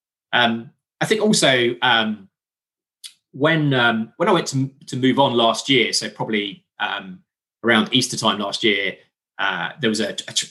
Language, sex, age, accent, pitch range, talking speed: English, male, 20-39, British, 110-135 Hz, 170 wpm